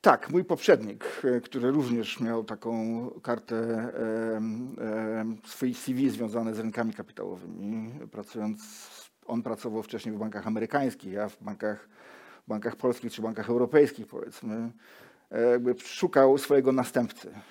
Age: 40-59